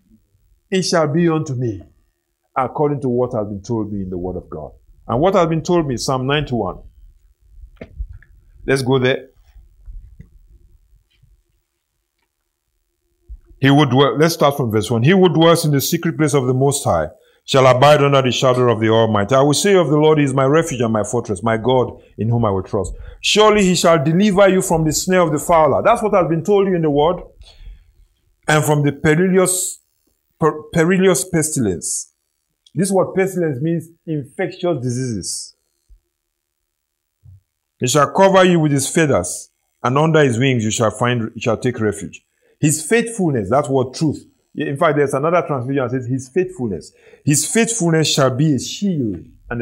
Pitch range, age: 110-160 Hz, 50-69